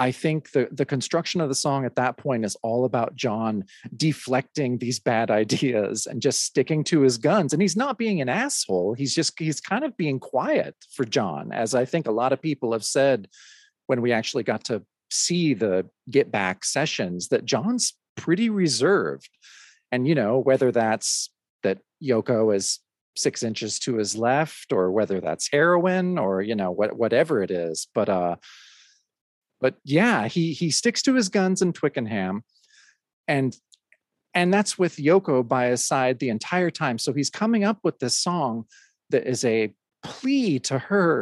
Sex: male